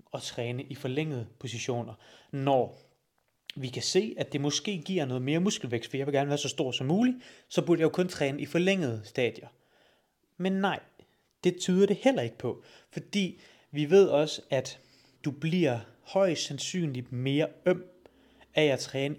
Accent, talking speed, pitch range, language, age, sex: native, 175 wpm, 125-155 Hz, Danish, 30-49, male